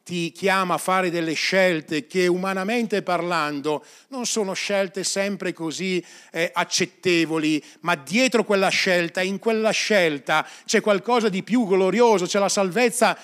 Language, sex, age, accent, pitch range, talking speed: Italian, male, 40-59, native, 150-190 Hz, 140 wpm